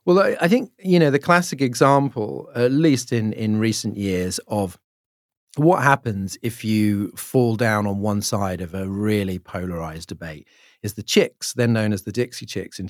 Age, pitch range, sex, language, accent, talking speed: 40-59, 100-140 Hz, male, English, British, 180 wpm